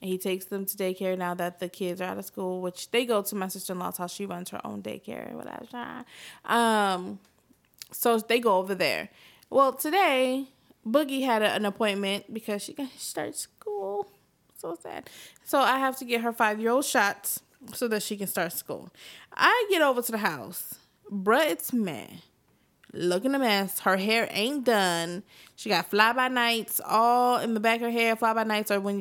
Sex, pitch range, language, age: female, 190-245 Hz, English, 20-39